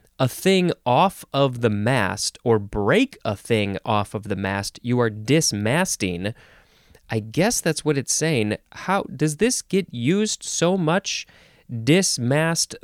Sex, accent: male, American